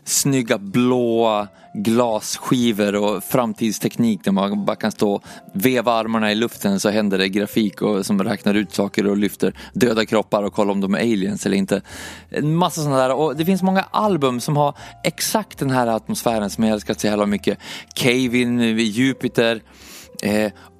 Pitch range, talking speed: 105-130 Hz, 175 wpm